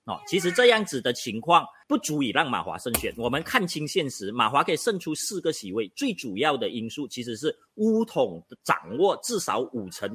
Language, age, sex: Chinese, 30-49, male